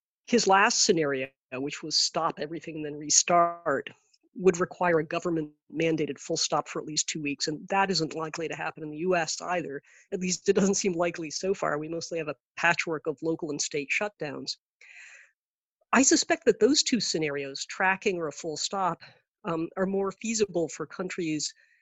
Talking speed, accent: 185 wpm, American